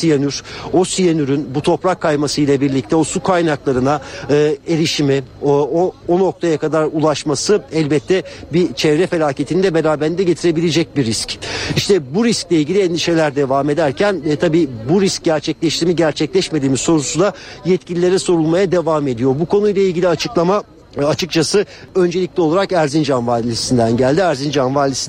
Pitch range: 145-180 Hz